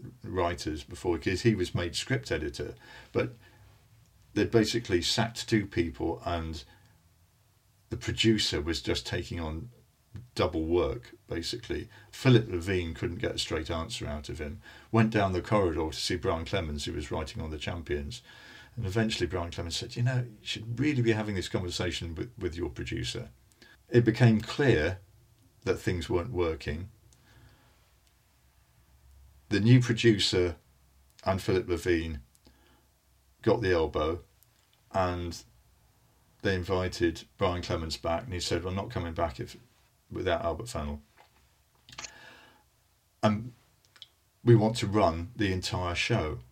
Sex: male